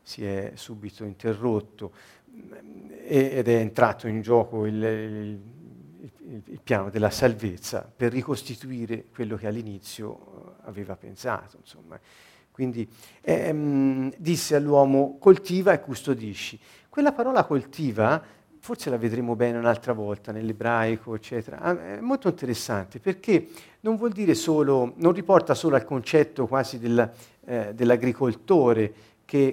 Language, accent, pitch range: Italian, native, 110-140 Hz